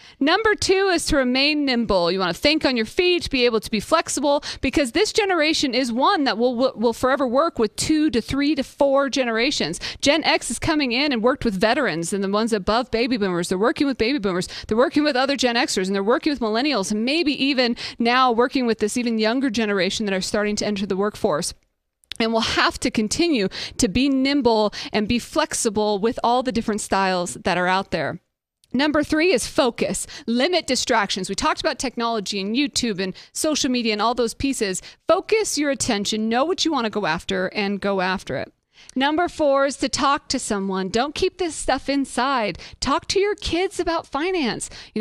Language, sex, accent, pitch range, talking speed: English, female, American, 215-290 Hz, 210 wpm